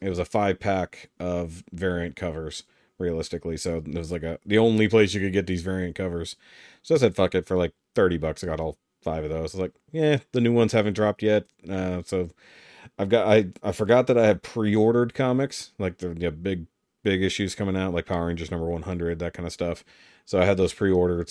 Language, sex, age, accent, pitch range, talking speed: English, male, 40-59, American, 90-105 Hz, 235 wpm